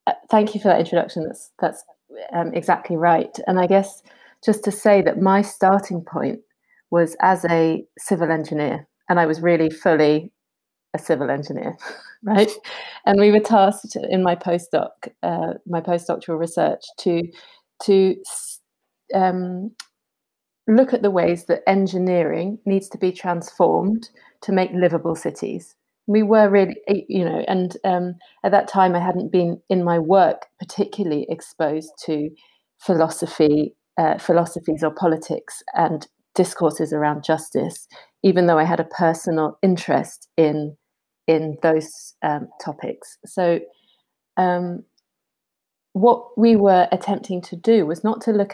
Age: 30-49